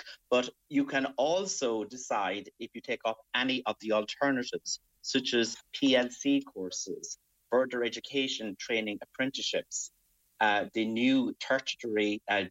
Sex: male